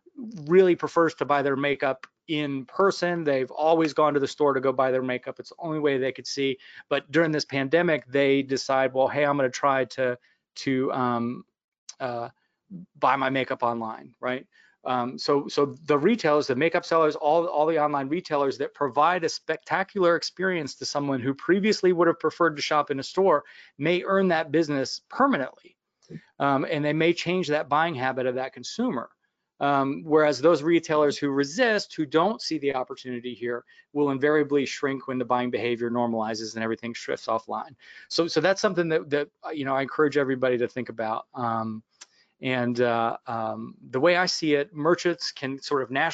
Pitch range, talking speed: 130-160 Hz, 185 wpm